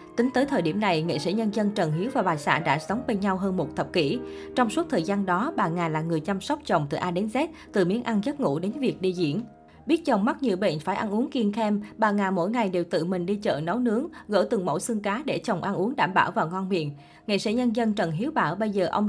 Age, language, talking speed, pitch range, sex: 20-39, Vietnamese, 290 wpm, 175-240 Hz, female